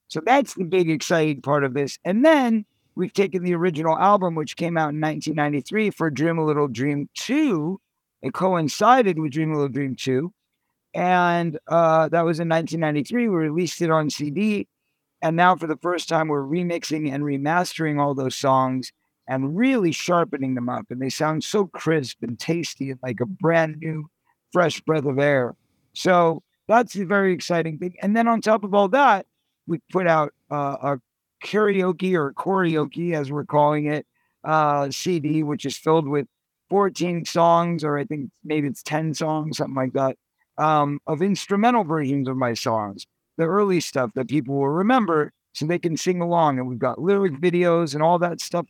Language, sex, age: English, male, 50-69